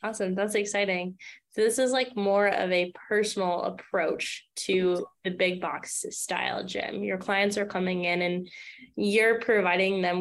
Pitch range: 175-205 Hz